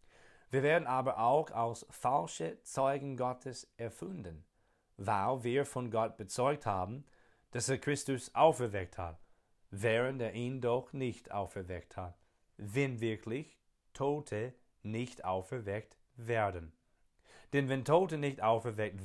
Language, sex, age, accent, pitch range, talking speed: German, male, 40-59, German, 95-130 Hz, 120 wpm